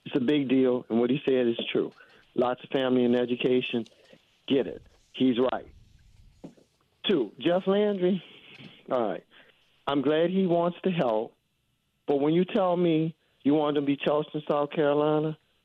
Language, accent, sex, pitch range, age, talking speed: English, American, male, 125-160 Hz, 50-69, 160 wpm